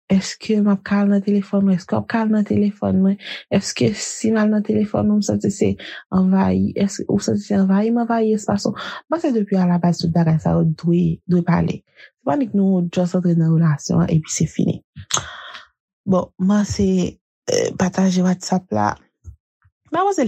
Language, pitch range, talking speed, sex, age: French, 165-200 Hz, 190 wpm, female, 30-49